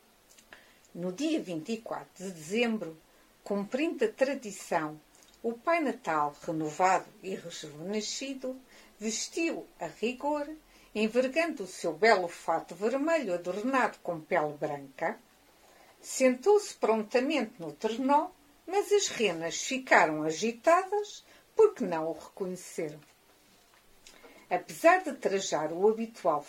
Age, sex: 50-69, female